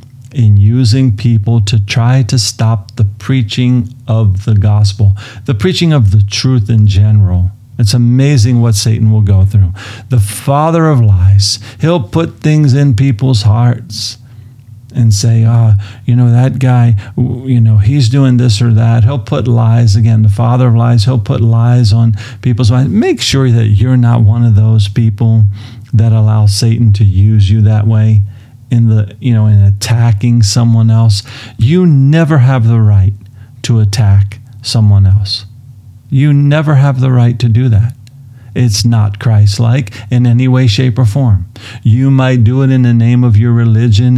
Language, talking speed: English, 170 wpm